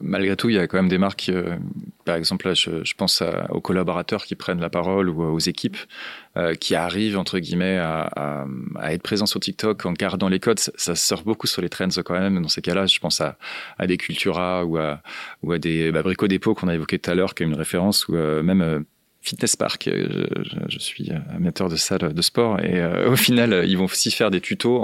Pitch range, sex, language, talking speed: 85-105 Hz, male, French, 245 wpm